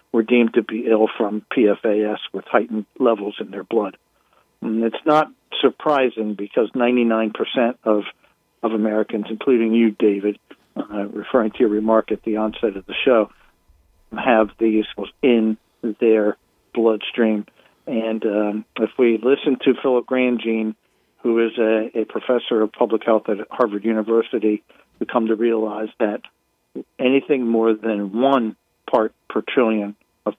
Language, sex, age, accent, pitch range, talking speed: English, male, 50-69, American, 110-120 Hz, 145 wpm